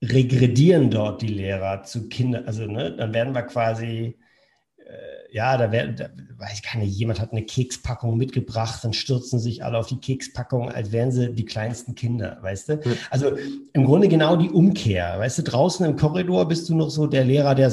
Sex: male